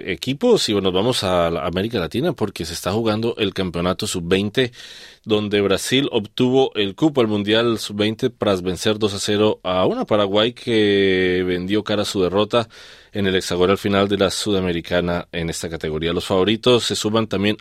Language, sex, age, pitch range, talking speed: Spanish, male, 30-49, 90-110 Hz, 175 wpm